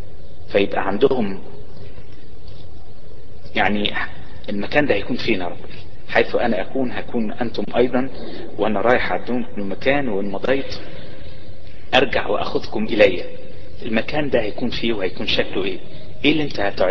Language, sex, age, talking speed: Arabic, male, 30-49, 115 wpm